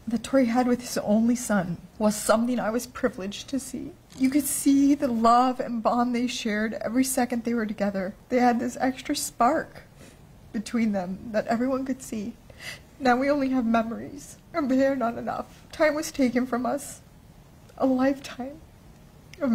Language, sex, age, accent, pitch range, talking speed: English, female, 30-49, American, 230-270 Hz, 175 wpm